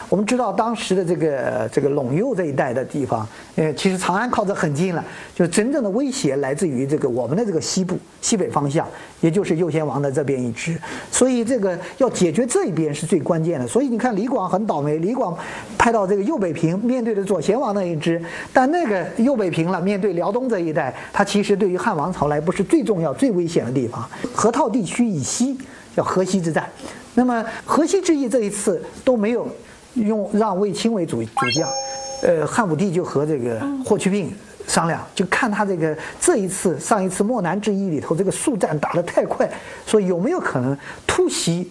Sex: male